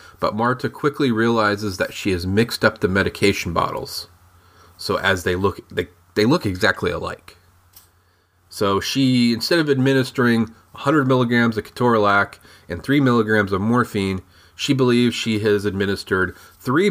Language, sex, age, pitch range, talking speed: English, male, 30-49, 95-125 Hz, 145 wpm